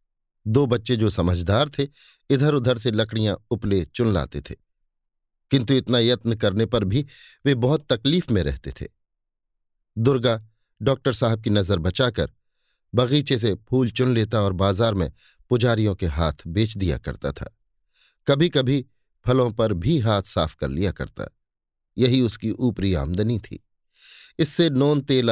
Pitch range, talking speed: 100-135 Hz, 150 wpm